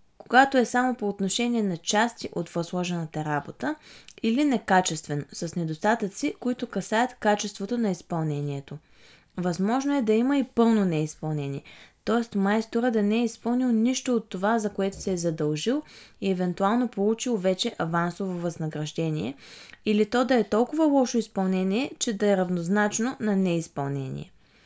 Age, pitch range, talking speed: 20-39, 180-245 Hz, 145 wpm